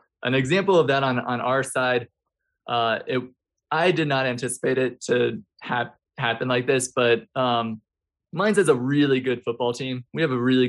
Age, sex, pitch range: 20-39, male, 115-130 Hz